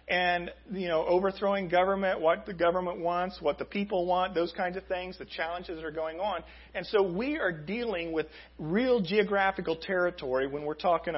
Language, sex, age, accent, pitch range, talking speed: English, male, 40-59, American, 115-185 Hz, 190 wpm